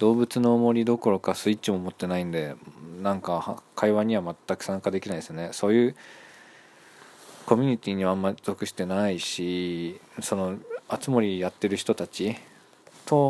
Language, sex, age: Japanese, male, 20-39